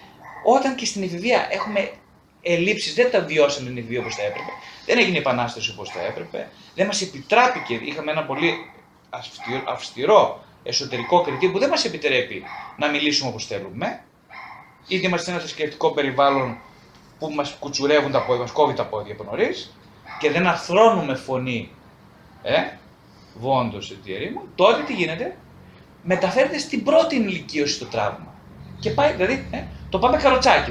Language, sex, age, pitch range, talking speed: Greek, male, 30-49, 130-210 Hz, 155 wpm